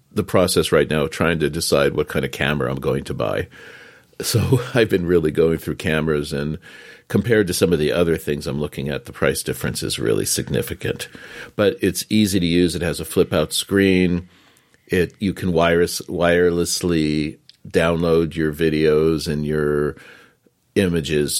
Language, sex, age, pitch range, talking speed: English, male, 50-69, 75-90 Hz, 175 wpm